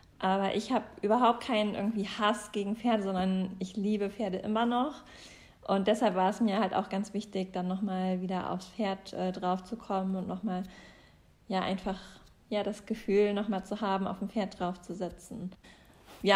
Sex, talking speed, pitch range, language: female, 185 wpm, 195-220 Hz, German